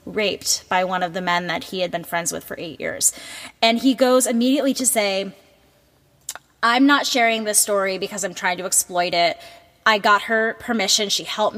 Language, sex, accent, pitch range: English, female, American, 180-225 Hz